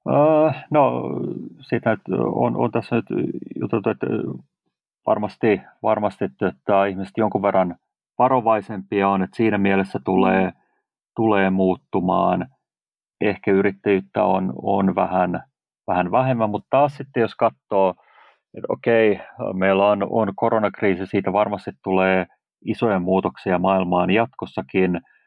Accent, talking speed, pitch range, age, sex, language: native, 110 wpm, 95-105 Hz, 40-59, male, Finnish